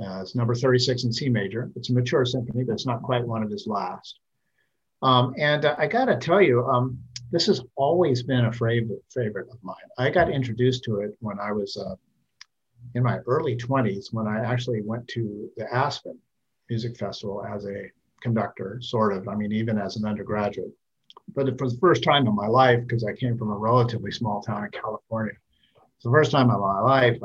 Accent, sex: American, male